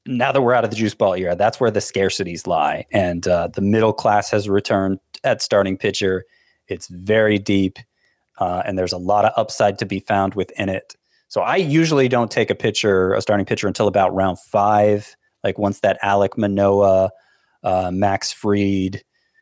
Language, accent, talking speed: English, American, 190 wpm